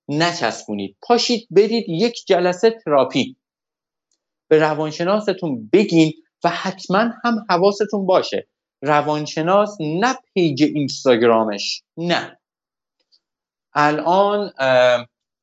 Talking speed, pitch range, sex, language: 80 wpm, 140-200 Hz, male, Persian